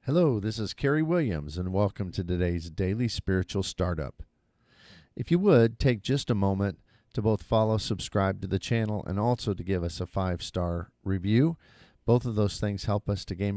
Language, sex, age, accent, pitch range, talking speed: English, male, 50-69, American, 90-115 Hz, 185 wpm